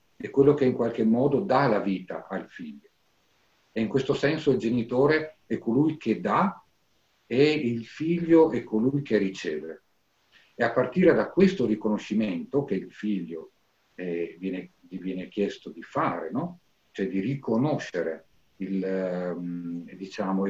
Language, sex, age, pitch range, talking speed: Italian, male, 50-69, 105-135 Hz, 145 wpm